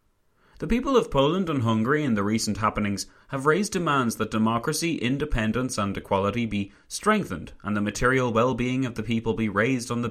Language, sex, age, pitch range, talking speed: English, male, 30-49, 95-120 Hz, 185 wpm